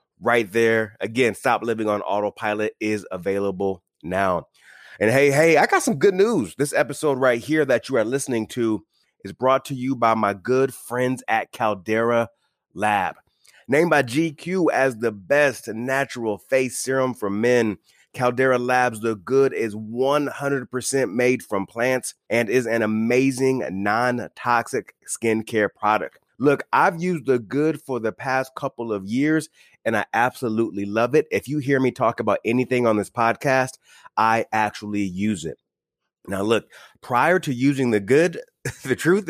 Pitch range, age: 110-135 Hz, 30-49